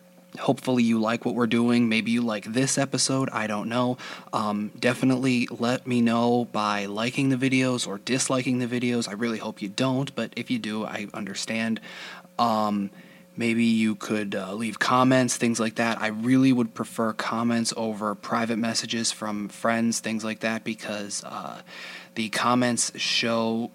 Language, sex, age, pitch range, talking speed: English, male, 20-39, 110-125 Hz, 165 wpm